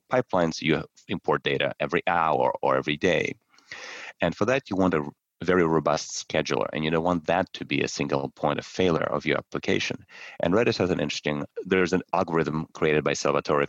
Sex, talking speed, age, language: male, 195 wpm, 30-49, English